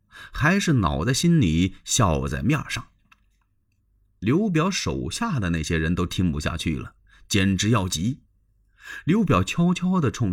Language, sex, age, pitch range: Chinese, male, 30-49, 95-150 Hz